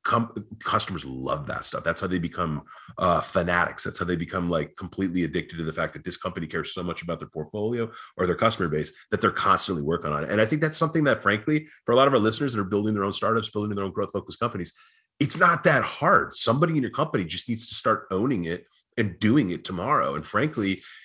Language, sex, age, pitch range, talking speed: English, male, 30-49, 95-115 Hz, 235 wpm